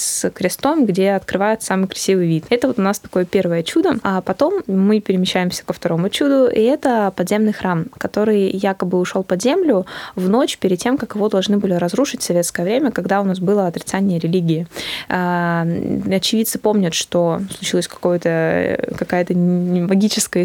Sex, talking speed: female, 160 wpm